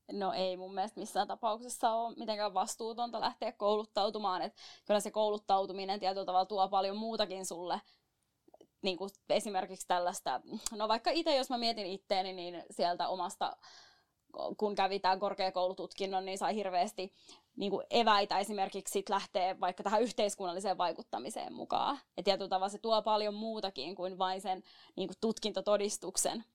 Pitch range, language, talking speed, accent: 190-230 Hz, Finnish, 140 wpm, native